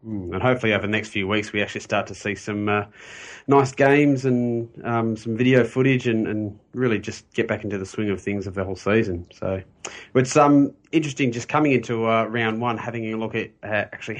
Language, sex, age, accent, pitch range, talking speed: English, male, 30-49, Australian, 105-120 Hz, 220 wpm